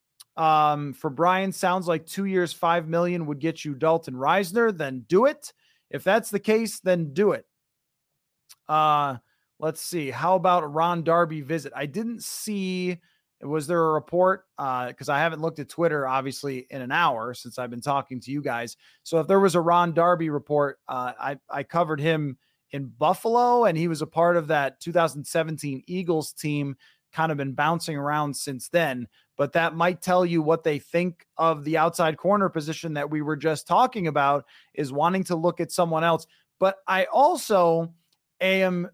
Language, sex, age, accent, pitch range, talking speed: English, male, 30-49, American, 150-200 Hz, 185 wpm